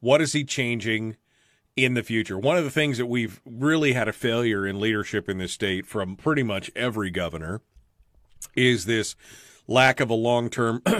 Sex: male